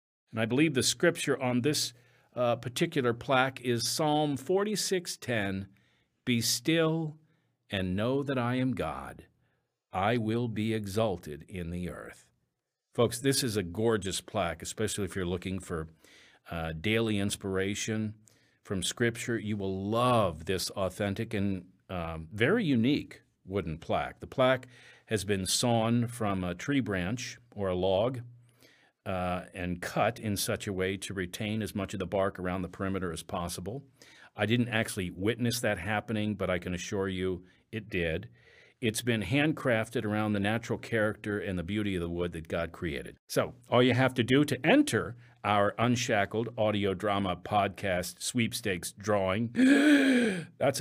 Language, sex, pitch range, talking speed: English, male, 95-125 Hz, 155 wpm